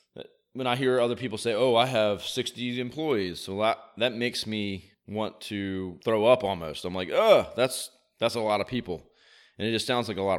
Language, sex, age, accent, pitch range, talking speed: English, male, 30-49, American, 95-125 Hz, 215 wpm